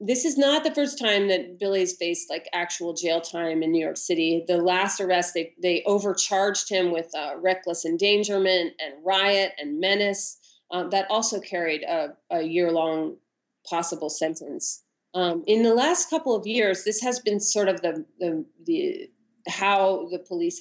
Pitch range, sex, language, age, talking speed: 175-225 Hz, female, English, 30-49, 175 wpm